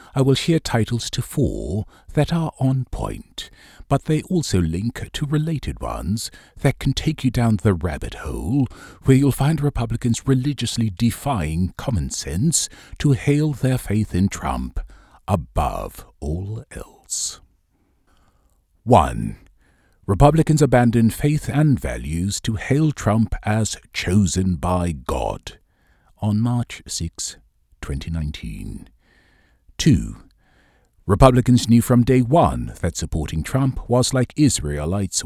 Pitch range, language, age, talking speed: 85-125 Hz, English, 50-69, 120 wpm